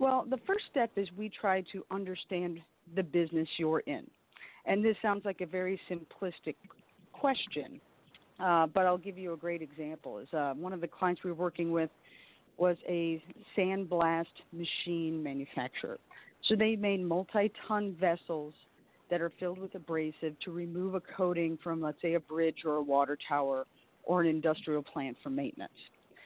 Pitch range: 160-195 Hz